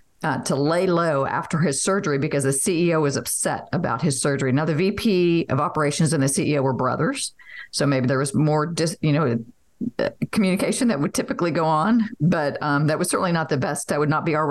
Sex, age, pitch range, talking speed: female, 50-69, 145-180 Hz, 220 wpm